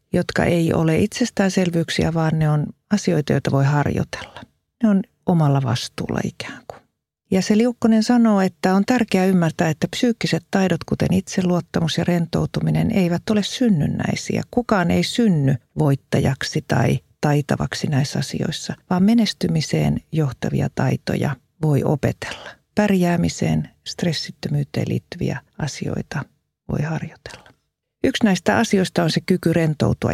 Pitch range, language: 155-205 Hz, Finnish